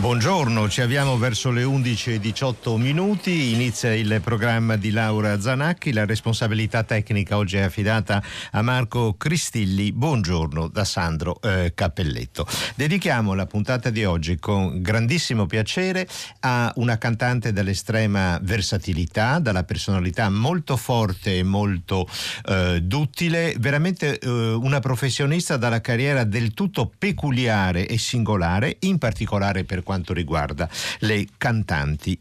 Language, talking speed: Italian, 125 wpm